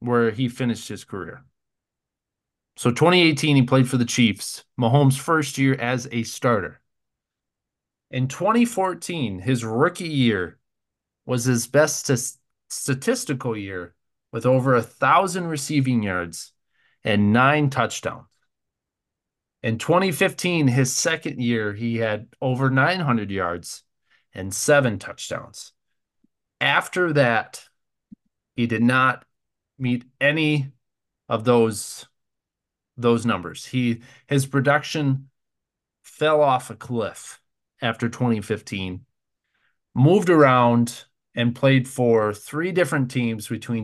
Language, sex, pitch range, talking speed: English, male, 115-140 Hz, 105 wpm